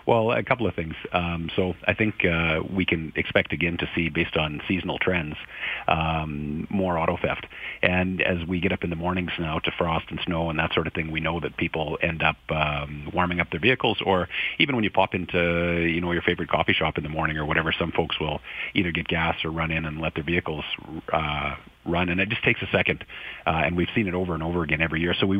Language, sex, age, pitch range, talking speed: English, male, 40-59, 80-90 Hz, 245 wpm